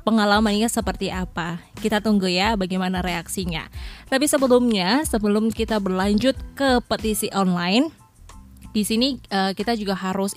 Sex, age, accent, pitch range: female, 20-39, Indonesian, 195-225 Hz